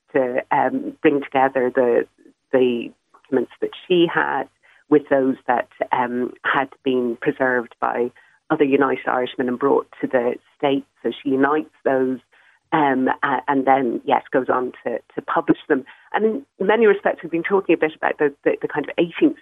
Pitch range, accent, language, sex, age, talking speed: 140-170 Hz, British, English, female, 40-59, 175 wpm